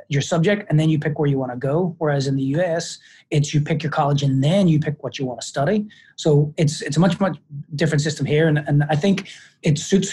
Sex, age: male, 30-49